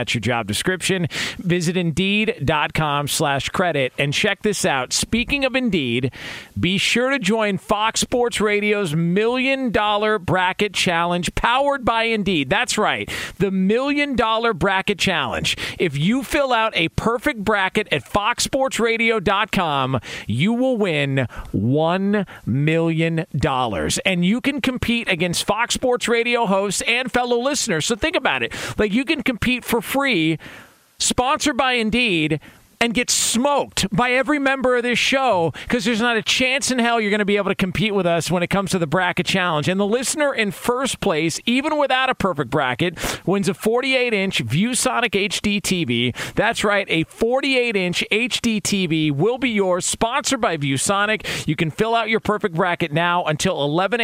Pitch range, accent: 165-235 Hz, American